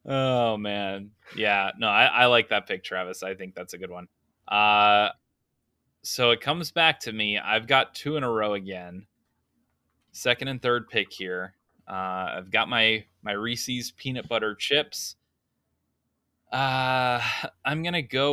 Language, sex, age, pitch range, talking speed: English, male, 20-39, 100-125 Hz, 155 wpm